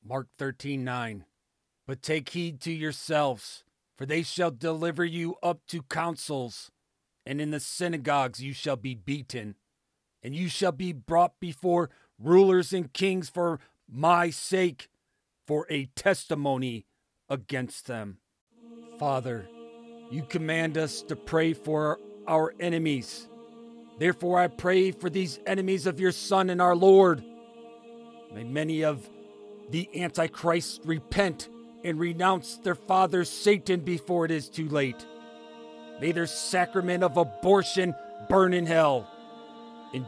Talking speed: 130 wpm